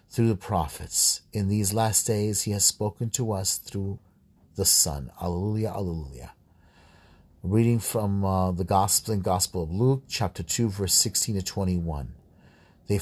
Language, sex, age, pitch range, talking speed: English, male, 40-59, 90-115 Hz, 150 wpm